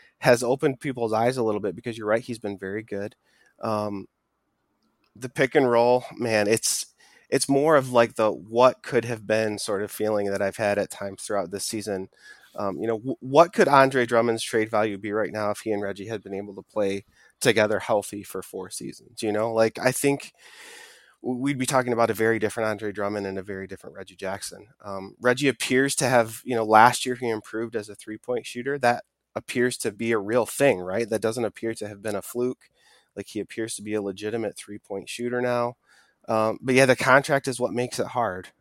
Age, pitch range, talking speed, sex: 20-39, 105-125 Hz, 215 wpm, male